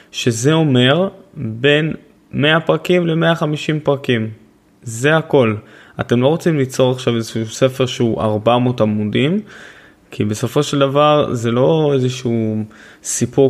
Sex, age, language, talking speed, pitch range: male, 20-39, Hebrew, 120 wpm, 120-160 Hz